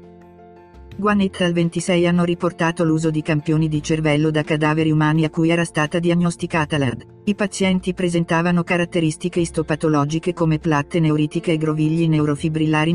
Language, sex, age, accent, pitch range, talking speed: Italian, female, 50-69, native, 155-175 Hz, 140 wpm